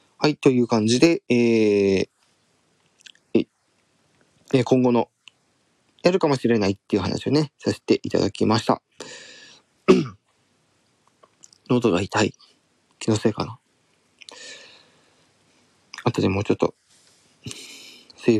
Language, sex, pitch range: Japanese, male, 110-135 Hz